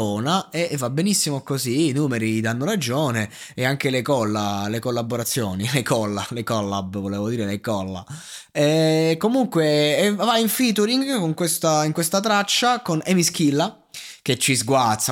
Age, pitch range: 20-39, 115-150 Hz